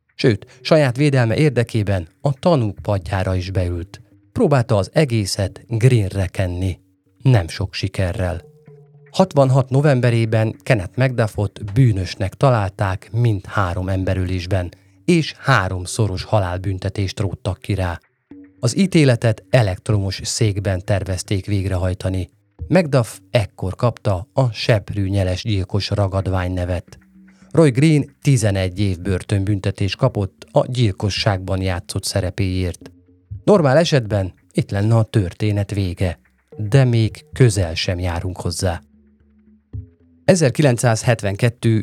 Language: Hungarian